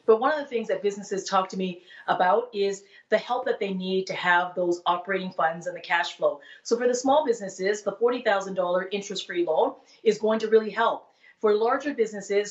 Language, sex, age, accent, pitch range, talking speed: English, female, 30-49, American, 190-235 Hz, 205 wpm